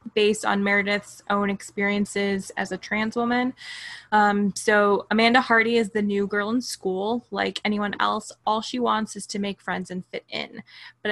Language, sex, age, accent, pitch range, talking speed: English, female, 20-39, American, 200-230 Hz, 180 wpm